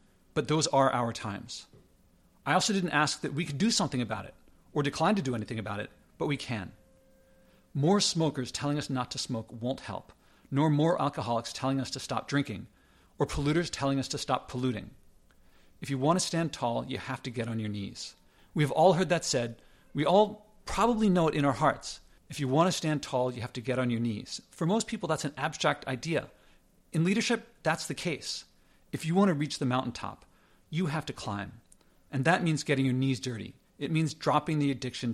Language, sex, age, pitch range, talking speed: English, male, 40-59, 130-165 Hz, 210 wpm